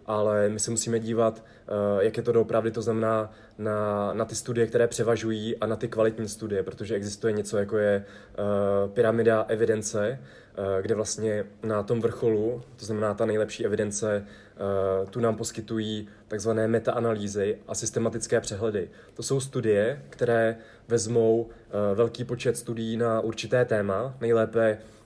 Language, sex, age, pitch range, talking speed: Slovak, male, 20-39, 105-115 Hz, 150 wpm